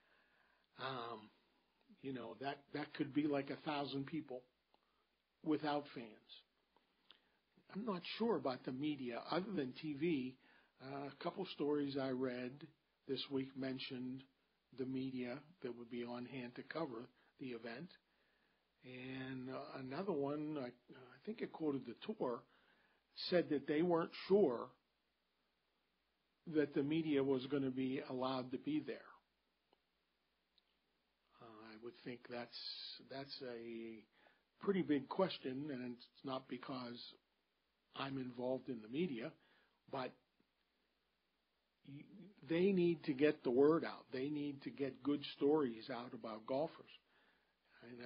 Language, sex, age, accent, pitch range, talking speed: English, male, 50-69, American, 130-150 Hz, 130 wpm